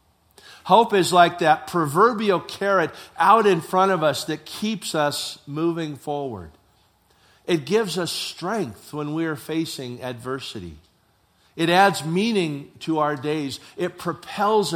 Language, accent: English, American